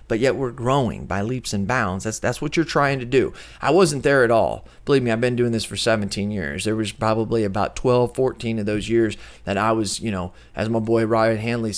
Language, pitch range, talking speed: English, 100-125 Hz, 245 wpm